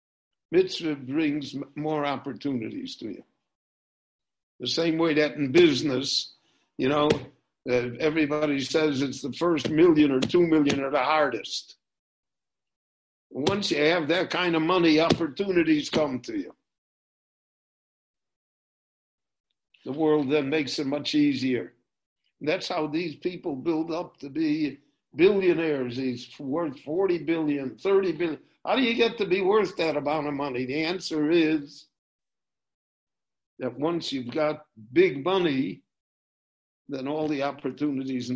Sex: male